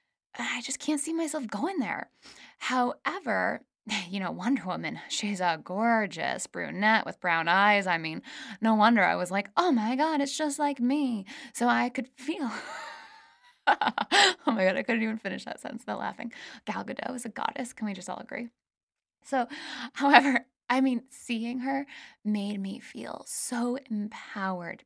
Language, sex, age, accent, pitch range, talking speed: English, female, 10-29, American, 195-265 Hz, 165 wpm